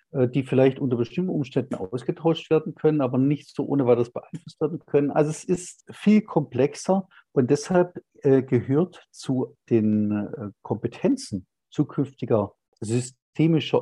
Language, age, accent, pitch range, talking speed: German, 50-69, German, 125-165 Hz, 125 wpm